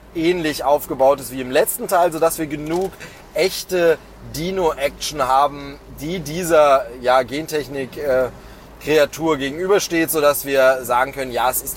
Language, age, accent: German, 30-49, German